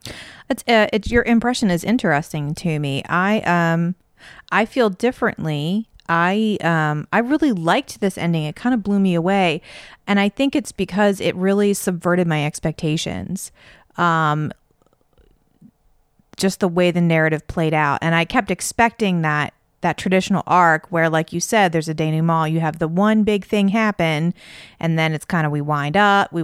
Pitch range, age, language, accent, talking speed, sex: 165-225 Hz, 30-49, English, American, 175 wpm, female